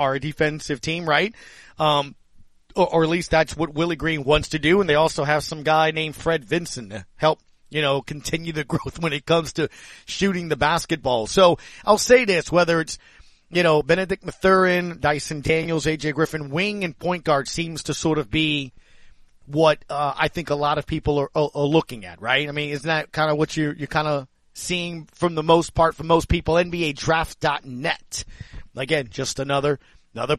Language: English